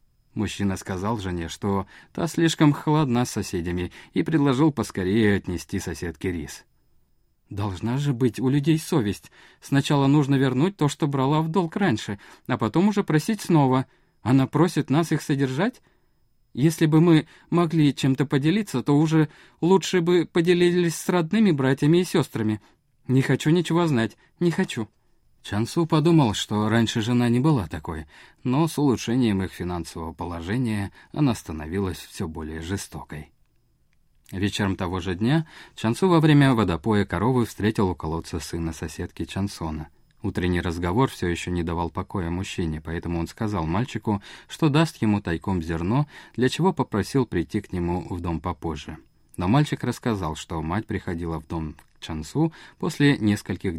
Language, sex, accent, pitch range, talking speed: Russian, male, native, 90-150 Hz, 150 wpm